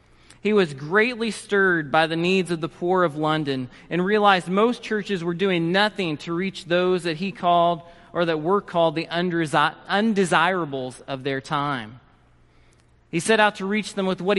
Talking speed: 175 wpm